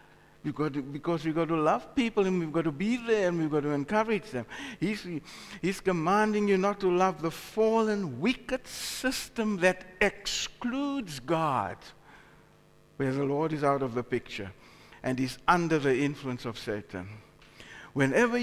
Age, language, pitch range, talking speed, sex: 60-79, English, 145-200 Hz, 155 wpm, male